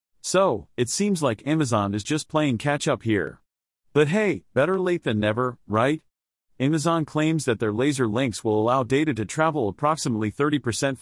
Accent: American